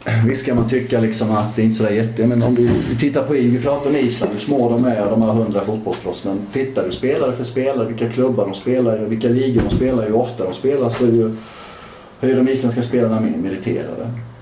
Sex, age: male, 30-49